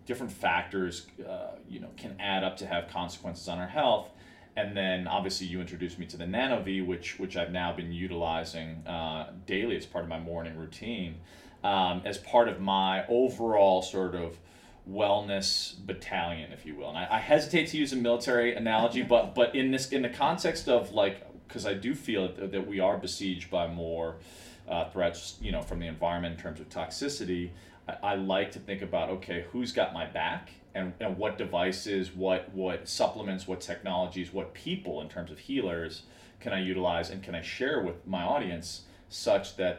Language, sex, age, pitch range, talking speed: English, male, 30-49, 85-100 Hz, 190 wpm